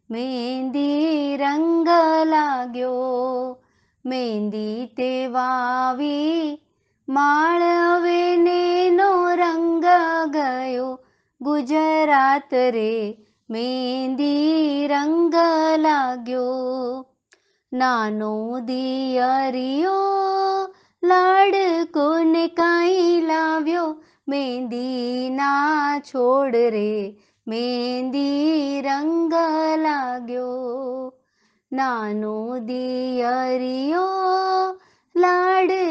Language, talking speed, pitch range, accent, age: English, 40 wpm, 250-325 Hz, Indian, 30-49